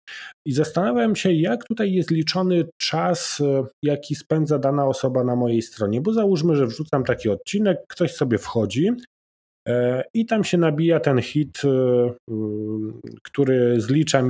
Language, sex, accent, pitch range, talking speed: Polish, male, native, 115-150 Hz, 135 wpm